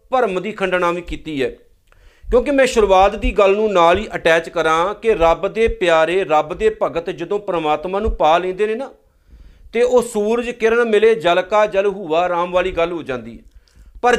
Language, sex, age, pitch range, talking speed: Punjabi, male, 40-59, 175-225 Hz, 190 wpm